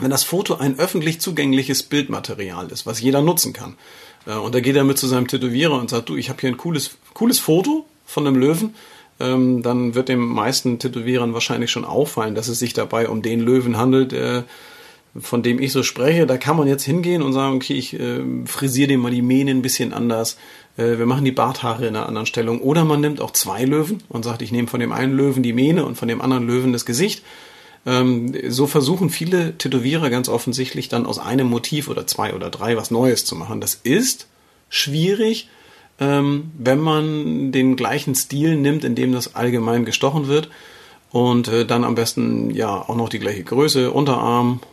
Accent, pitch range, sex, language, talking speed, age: German, 120-150 Hz, male, German, 195 wpm, 40-59